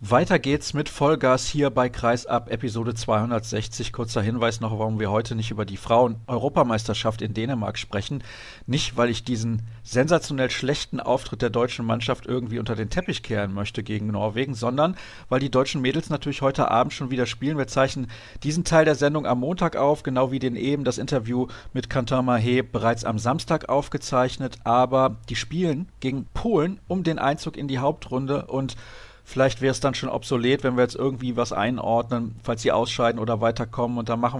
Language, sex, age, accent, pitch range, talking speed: German, male, 40-59, German, 115-135 Hz, 180 wpm